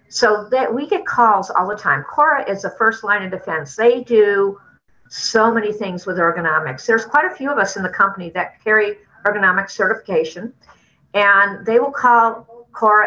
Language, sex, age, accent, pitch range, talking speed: English, female, 50-69, American, 185-230 Hz, 185 wpm